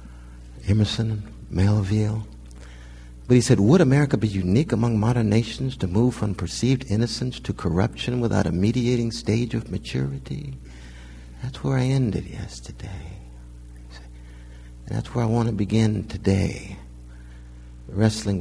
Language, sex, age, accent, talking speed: English, male, 60-79, American, 125 wpm